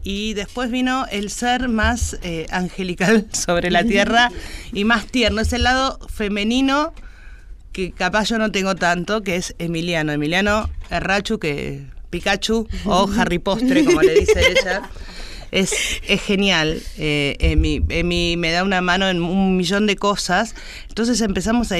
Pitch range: 165-220 Hz